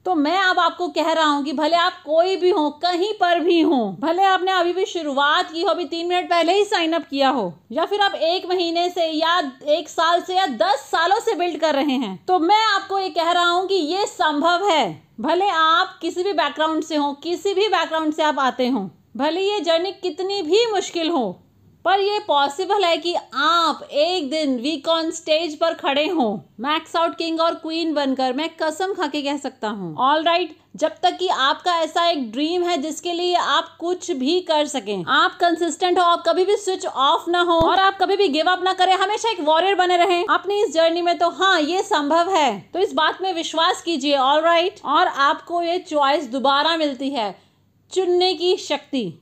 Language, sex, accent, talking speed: Hindi, female, native, 210 wpm